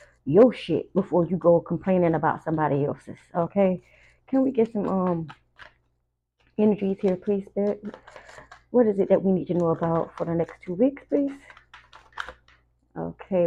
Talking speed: 150 wpm